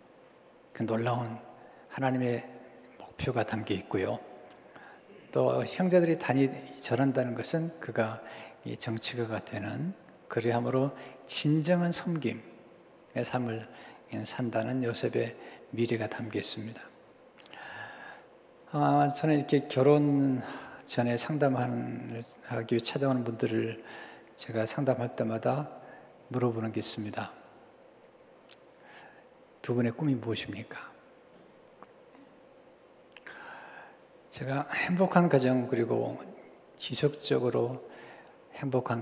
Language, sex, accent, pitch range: Korean, male, native, 115-145 Hz